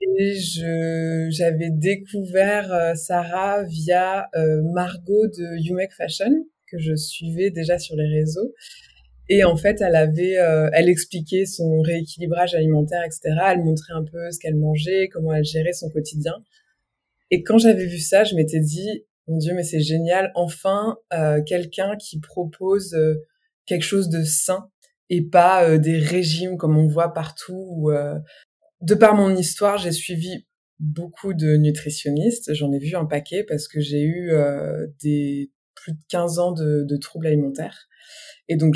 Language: French